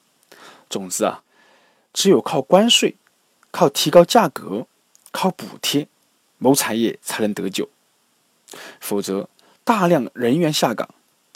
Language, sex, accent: Chinese, male, native